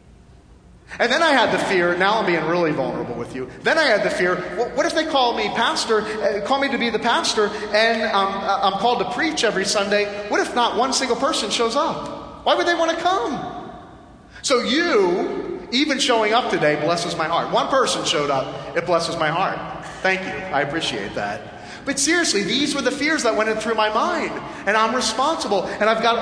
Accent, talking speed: American, 210 wpm